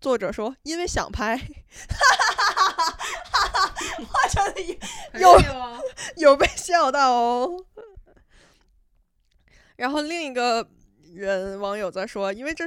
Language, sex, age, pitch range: Chinese, female, 20-39, 195-265 Hz